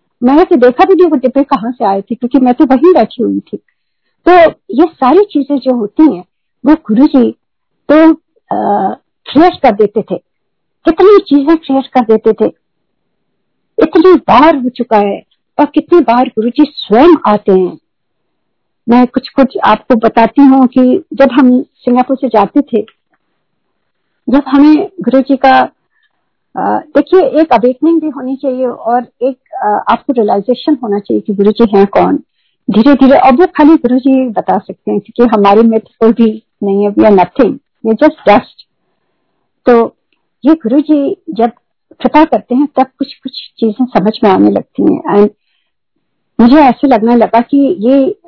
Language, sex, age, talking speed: Hindi, female, 50-69, 150 wpm